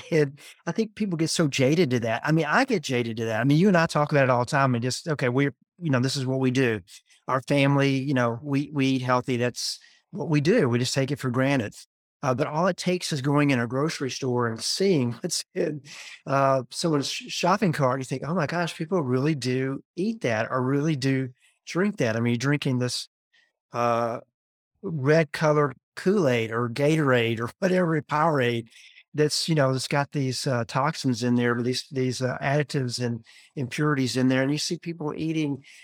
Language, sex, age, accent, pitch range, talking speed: English, male, 50-69, American, 125-155 Hz, 215 wpm